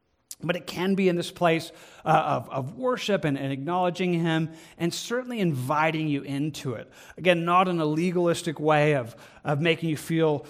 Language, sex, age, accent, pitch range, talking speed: English, male, 40-59, American, 150-180 Hz, 185 wpm